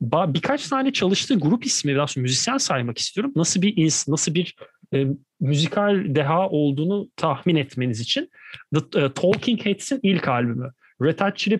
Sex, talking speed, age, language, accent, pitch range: male, 150 wpm, 40-59, Turkish, native, 145-210 Hz